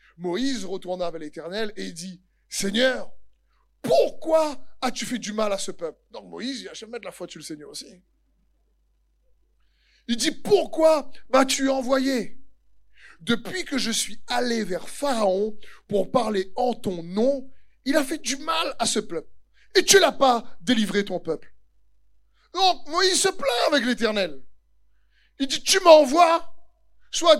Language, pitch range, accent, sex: French, 205-285 Hz, French, male